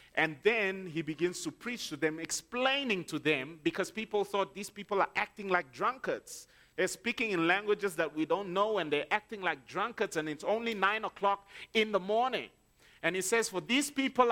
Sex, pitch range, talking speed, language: male, 170-235 Hz, 195 wpm, English